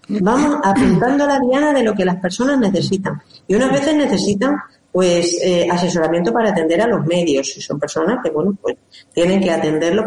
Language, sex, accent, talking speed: Spanish, female, Spanish, 190 wpm